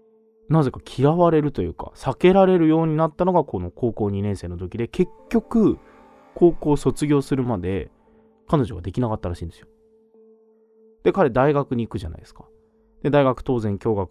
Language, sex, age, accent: Japanese, male, 20-39, native